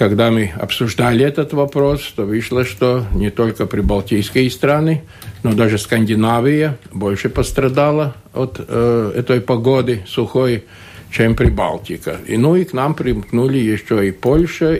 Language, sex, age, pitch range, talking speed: Russian, male, 60-79, 100-135 Hz, 135 wpm